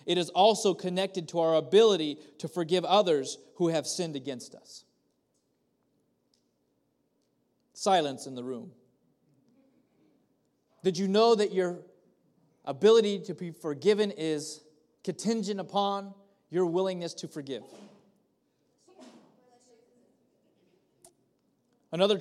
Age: 30-49